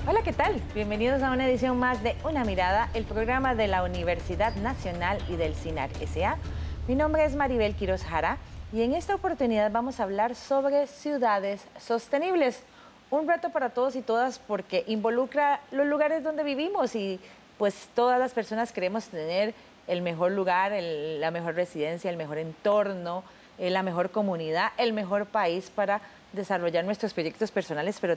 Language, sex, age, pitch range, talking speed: Spanish, female, 30-49, 175-235 Hz, 165 wpm